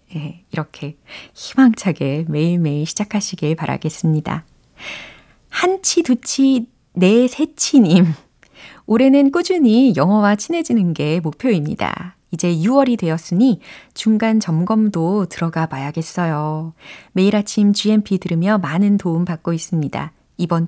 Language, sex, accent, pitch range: Korean, female, native, 165-230 Hz